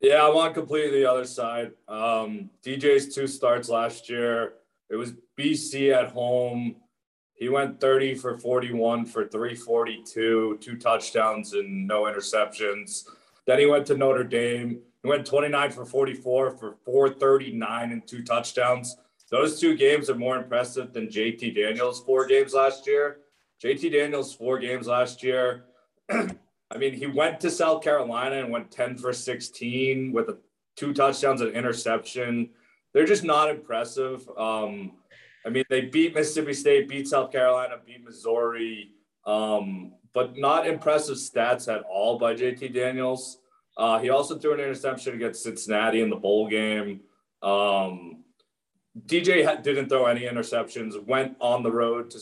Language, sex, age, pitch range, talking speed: English, male, 30-49, 115-140 Hz, 150 wpm